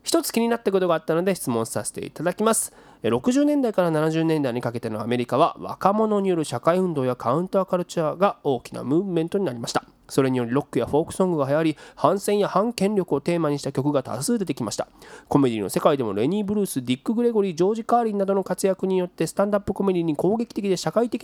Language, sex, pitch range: Japanese, male, 140-200 Hz